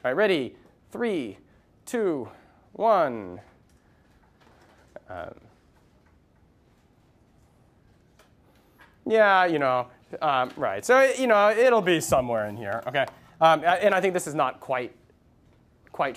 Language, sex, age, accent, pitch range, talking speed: English, male, 30-49, American, 125-195 Hz, 110 wpm